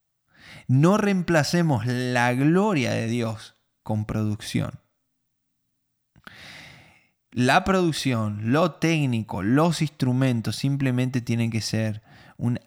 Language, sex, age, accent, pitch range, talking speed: Spanish, male, 20-39, Argentinian, 110-140 Hz, 90 wpm